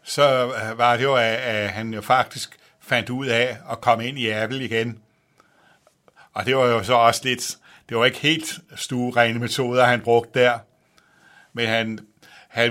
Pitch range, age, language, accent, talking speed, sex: 115-125 Hz, 60-79, Danish, native, 170 wpm, male